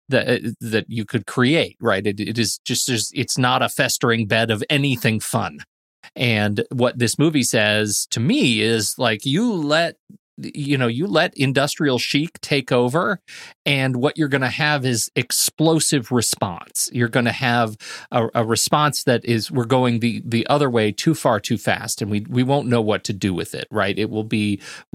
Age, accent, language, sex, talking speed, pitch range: 30-49, American, English, male, 195 wpm, 110-135 Hz